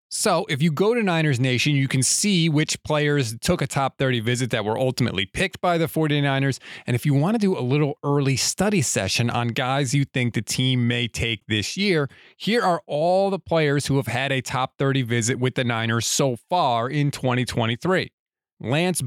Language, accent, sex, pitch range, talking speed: English, American, male, 130-180 Hz, 205 wpm